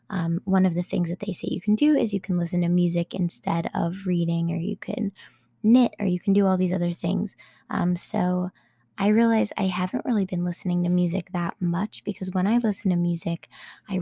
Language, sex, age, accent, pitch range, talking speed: English, female, 20-39, American, 175-205 Hz, 225 wpm